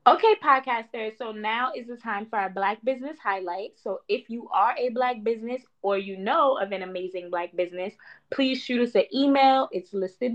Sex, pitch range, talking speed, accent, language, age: female, 190-265 Hz, 195 wpm, American, English, 20-39